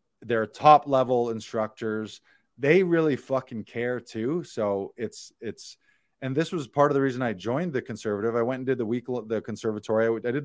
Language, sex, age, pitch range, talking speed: English, male, 20-39, 110-130 Hz, 190 wpm